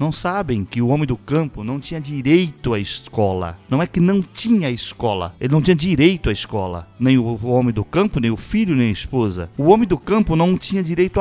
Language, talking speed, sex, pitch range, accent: Portuguese, 225 wpm, male, 115-185 Hz, Brazilian